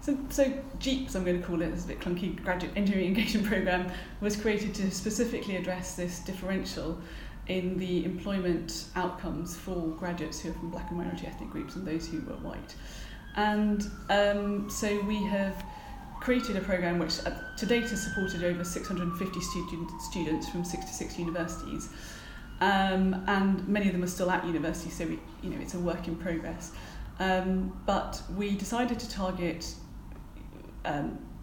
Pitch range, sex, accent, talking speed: 175-205 Hz, female, British, 170 wpm